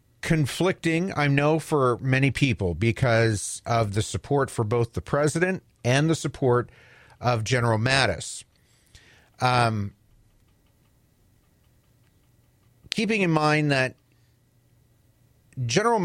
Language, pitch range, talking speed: English, 110-140 Hz, 95 wpm